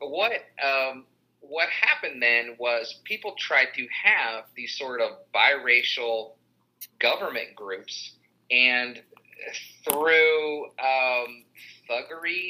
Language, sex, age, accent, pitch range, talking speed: English, male, 30-49, American, 110-130 Hz, 90 wpm